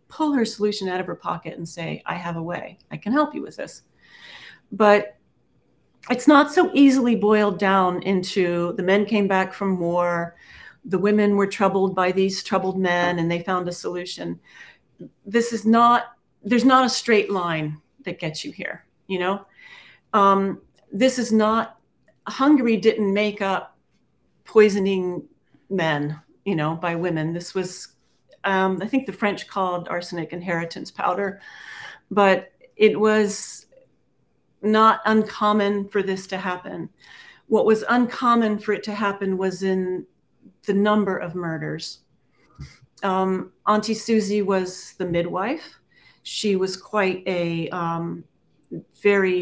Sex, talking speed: female, 145 wpm